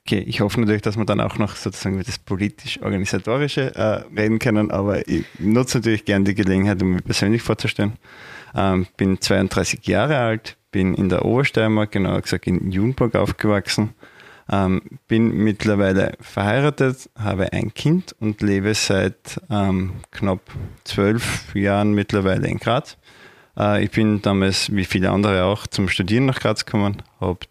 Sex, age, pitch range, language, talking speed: male, 20-39, 95-115 Hz, German, 155 wpm